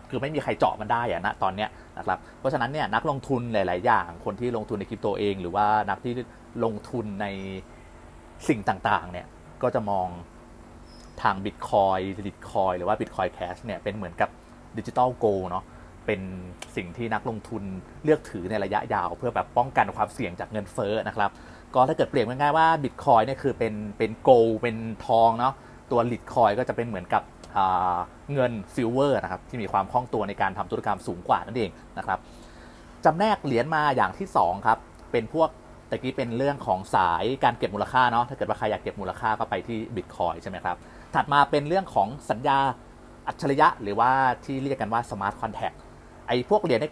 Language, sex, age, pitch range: Thai, male, 30-49, 95-125 Hz